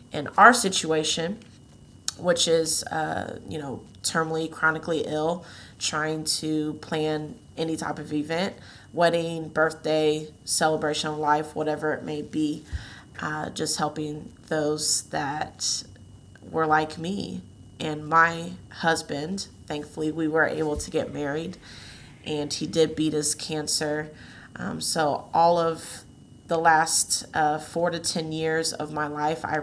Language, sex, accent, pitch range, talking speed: English, female, American, 150-160 Hz, 135 wpm